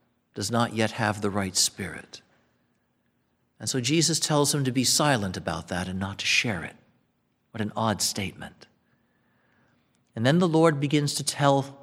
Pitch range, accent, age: 100-135 Hz, American, 50-69